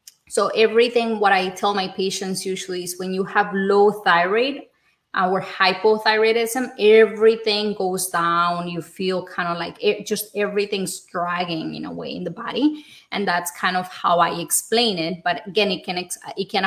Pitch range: 190-230 Hz